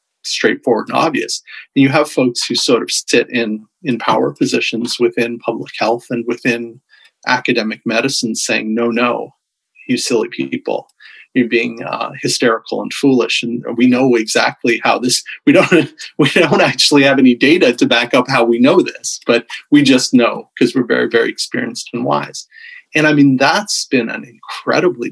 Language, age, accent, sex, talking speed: English, 40-59, American, male, 175 wpm